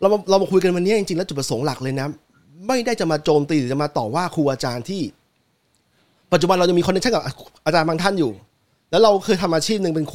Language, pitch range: Thai, 145-190 Hz